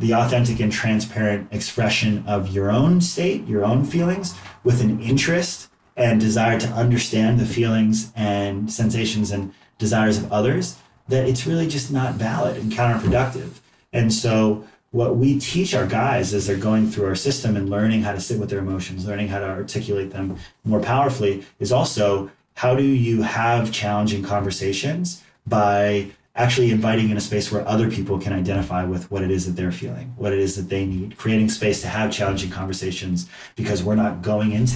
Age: 30-49